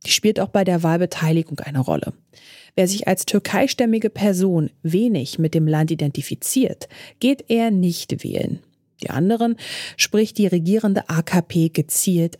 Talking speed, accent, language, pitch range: 140 wpm, German, German, 160-215 Hz